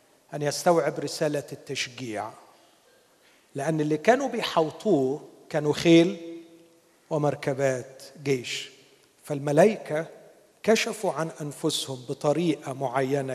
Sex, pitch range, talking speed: male, 145-175 Hz, 80 wpm